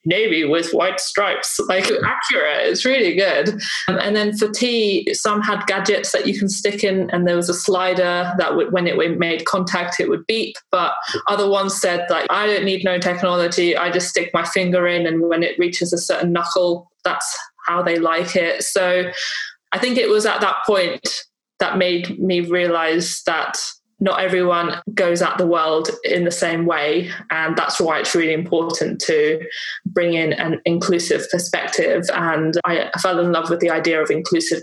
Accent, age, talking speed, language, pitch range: British, 20-39, 185 wpm, English, 170-200 Hz